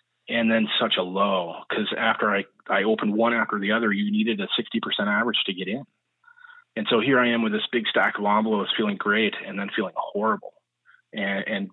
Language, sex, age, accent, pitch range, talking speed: English, male, 30-49, American, 100-120 Hz, 210 wpm